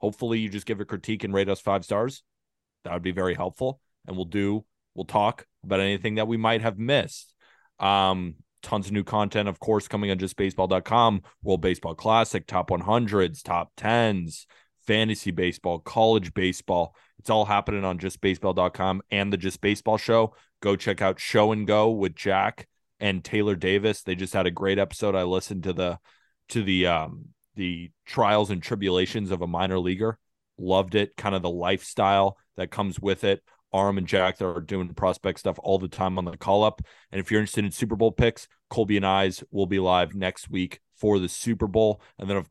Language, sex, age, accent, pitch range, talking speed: English, male, 20-39, American, 95-105 Hz, 195 wpm